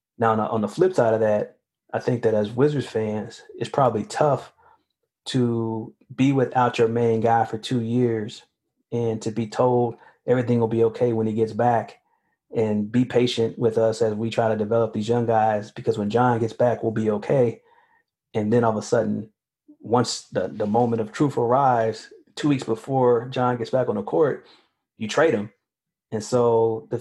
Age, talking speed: 30-49, 190 wpm